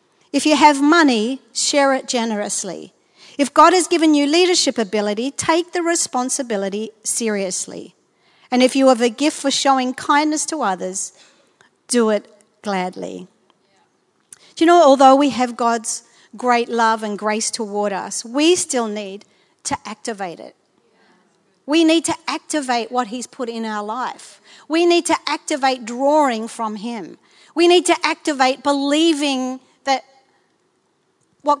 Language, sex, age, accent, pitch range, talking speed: English, female, 50-69, Australian, 225-295 Hz, 140 wpm